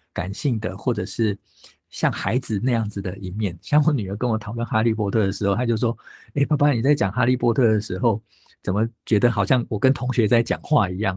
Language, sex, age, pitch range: Chinese, male, 50-69, 100-125 Hz